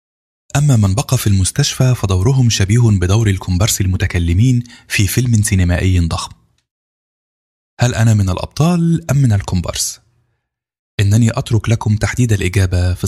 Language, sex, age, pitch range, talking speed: Arabic, male, 20-39, 95-120 Hz, 125 wpm